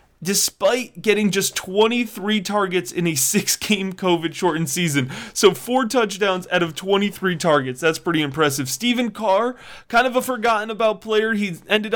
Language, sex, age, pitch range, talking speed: English, male, 30-49, 160-210 Hz, 145 wpm